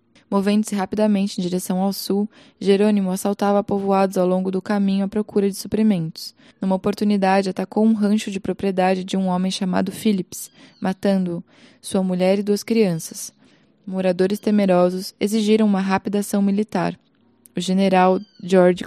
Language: Portuguese